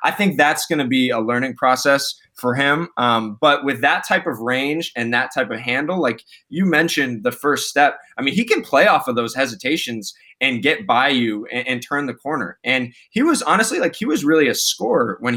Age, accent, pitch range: 20-39, American, 120-150 Hz